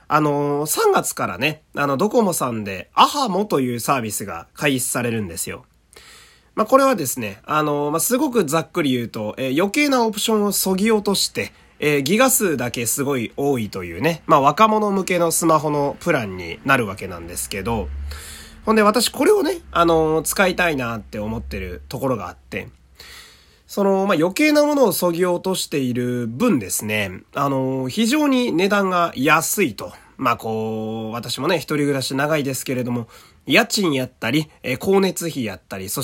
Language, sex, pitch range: Japanese, male, 120-195 Hz